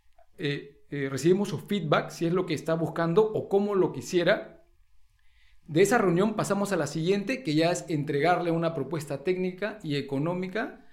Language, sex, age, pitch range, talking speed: Spanish, male, 40-59, 155-220 Hz, 170 wpm